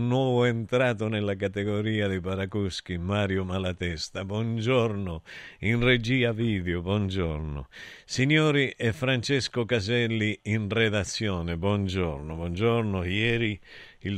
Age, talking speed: 50-69, 95 wpm